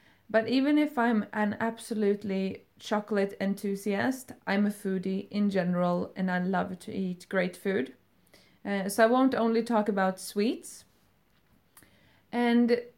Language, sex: English, female